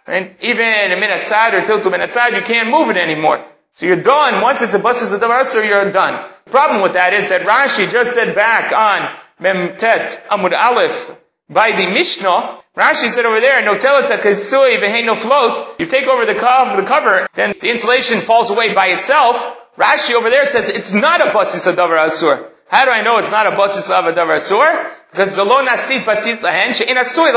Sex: male